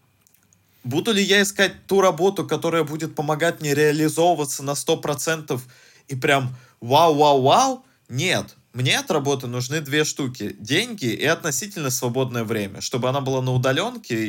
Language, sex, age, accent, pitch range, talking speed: Russian, male, 20-39, native, 110-150 Hz, 140 wpm